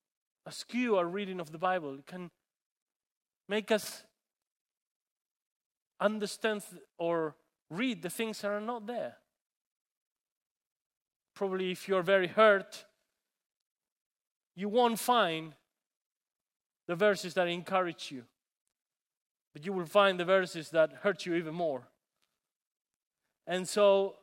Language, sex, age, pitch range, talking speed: English, male, 30-49, 170-215 Hz, 110 wpm